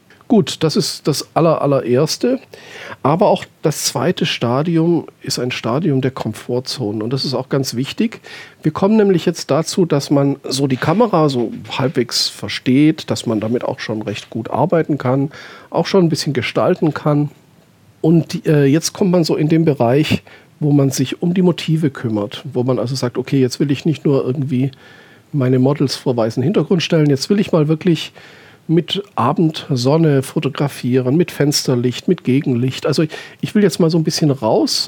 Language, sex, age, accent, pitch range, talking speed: German, male, 50-69, German, 130-165 Hz, 180 wpm